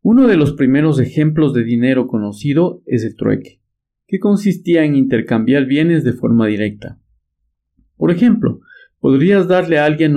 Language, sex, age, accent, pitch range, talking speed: Spanish, male, 50-69, Mexican, 115-170 Hz, 150 wpm